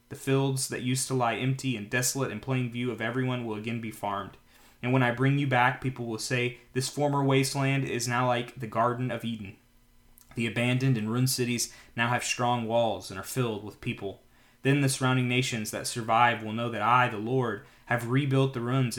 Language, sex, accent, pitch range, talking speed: English, male, American, 110-130 Hz, 210 wpm